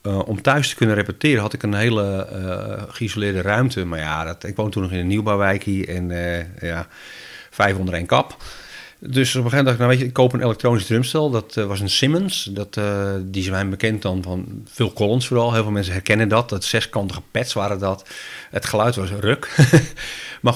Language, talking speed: Dutch, 220 wpm